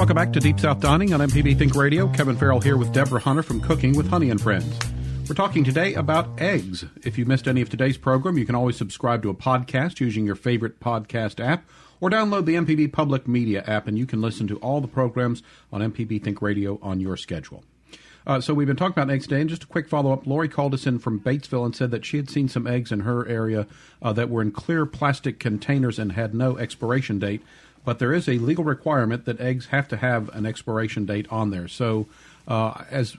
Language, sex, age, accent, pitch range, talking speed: English, male, 50-69, American, 110-140 Hz, 235 wpm